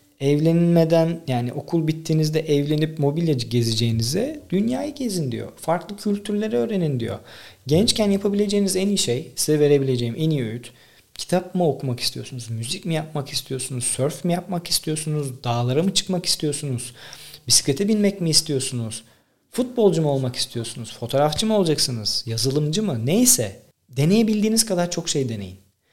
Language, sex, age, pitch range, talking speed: Turkish, male, 40-59, 125-195 Hz, 135 wpm